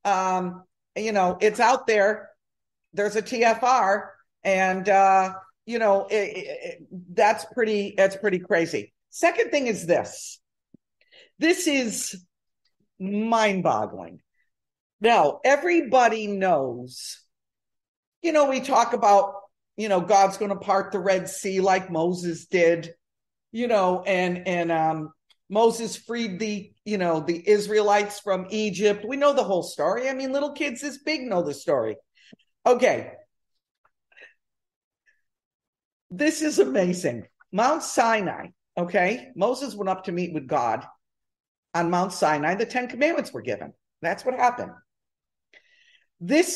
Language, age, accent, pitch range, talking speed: English, 50-69, American, 190-255 Hz, 125 wpm